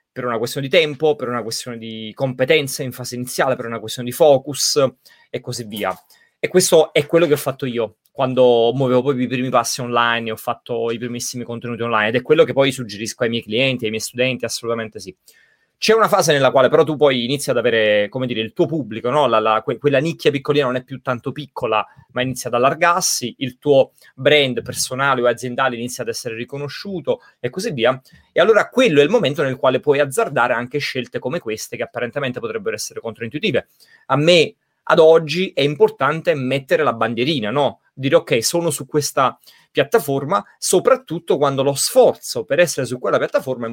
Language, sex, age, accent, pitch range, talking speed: Italian, male, 30-49, native, 120-155 Hz, 195 wpm